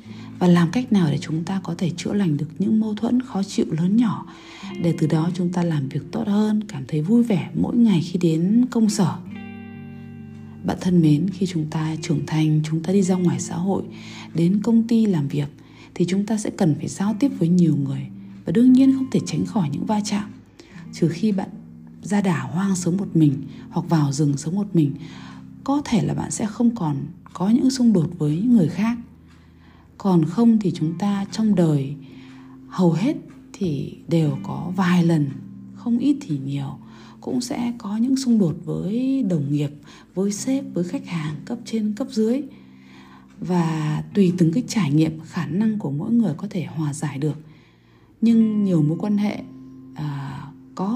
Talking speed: 195 wpm